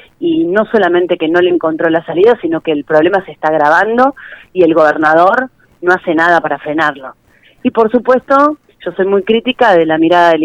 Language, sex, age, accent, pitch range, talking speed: Spanish, female, 30-49, Argentinian, 165-205 Hz, 200 wpm